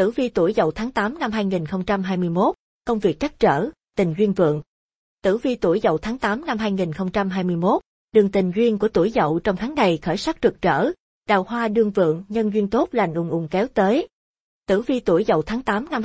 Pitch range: 180-230 Hz